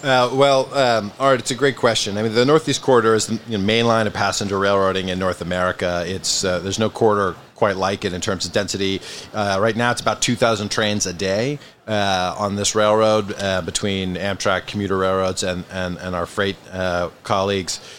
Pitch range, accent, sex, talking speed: 100-120 Hz, American, male, 205 wpm